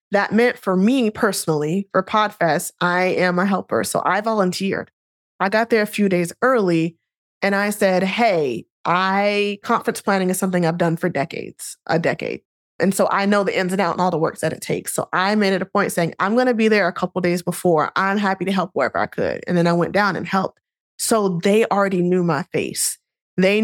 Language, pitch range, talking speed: English, 170-205 Hz, 225 wpm